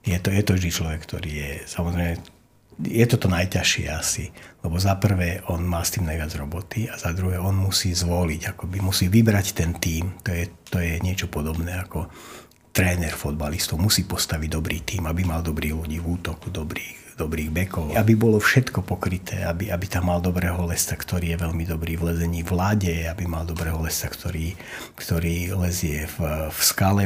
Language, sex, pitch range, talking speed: Slovak, male, 85-105 Hz, 180 wpm